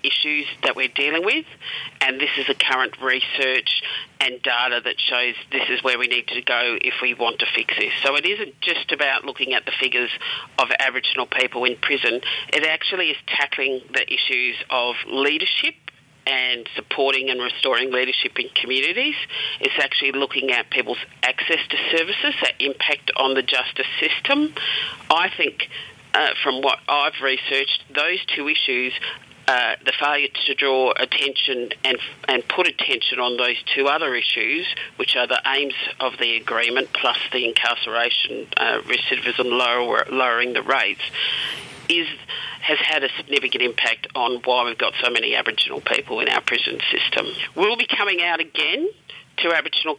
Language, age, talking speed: English, 40-59, 165 wpm